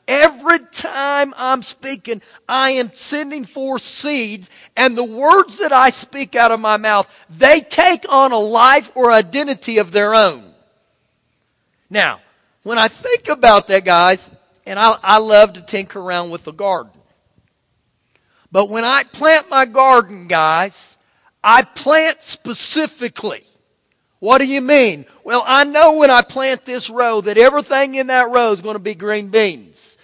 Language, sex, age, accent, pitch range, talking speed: English, male, 40-59, American, 210-270 Hz, 160 wpm